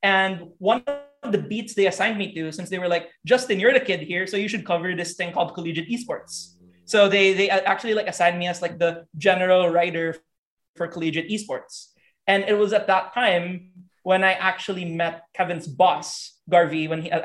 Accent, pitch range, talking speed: Filipino, 170-195 Hz, 200 wpm